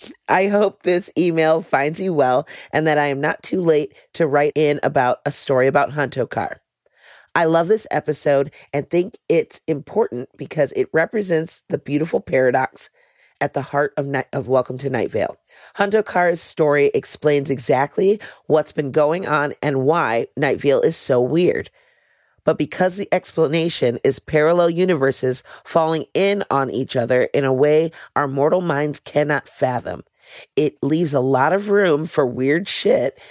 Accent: American